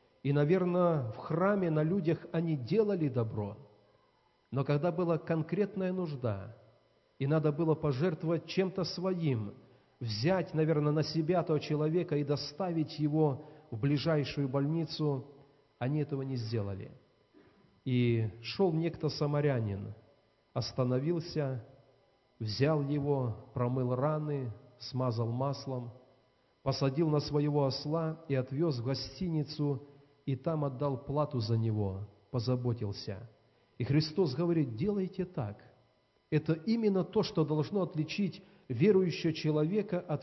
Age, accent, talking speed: 40-59, native, 115 wpm